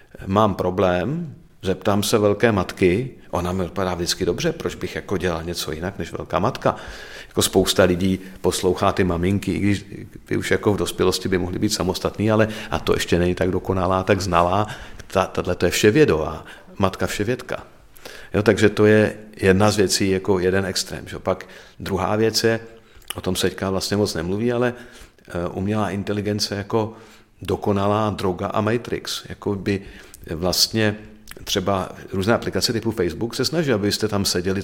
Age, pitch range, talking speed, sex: 50-69, 95-110 Hz, 165 wpm, male